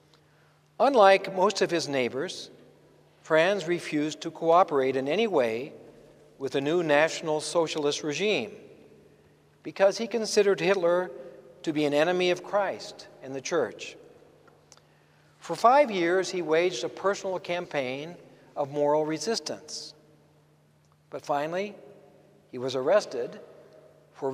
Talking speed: 120 wpm